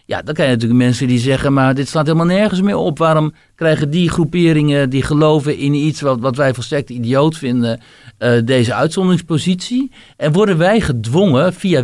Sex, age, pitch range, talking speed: male, 60-79, 125-165 Hz, 190 wpm